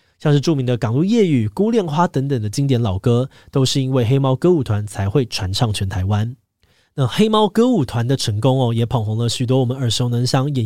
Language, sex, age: Chinese, male, 20-39